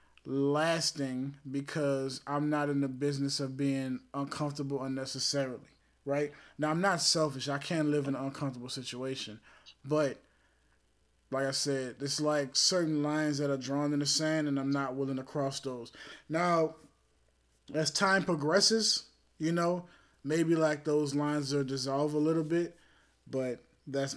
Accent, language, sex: American, English, male